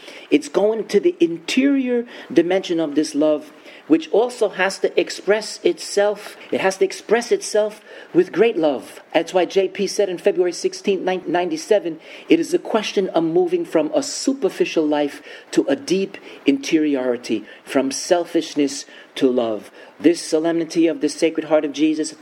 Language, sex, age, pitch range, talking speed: English, male, 40-59, 130-210 Hz, 155 wpm